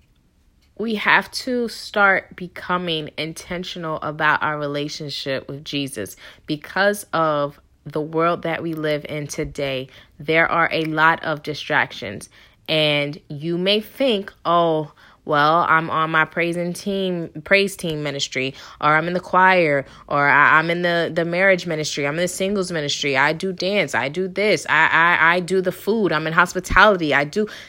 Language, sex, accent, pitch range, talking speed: English, female, American, 150-180 Hz, 160 wpm